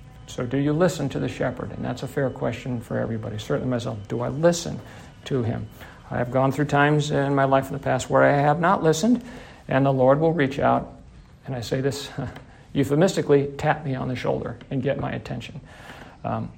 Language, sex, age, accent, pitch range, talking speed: English, male, 50-69, American, 125-145 Hz, 210 wpm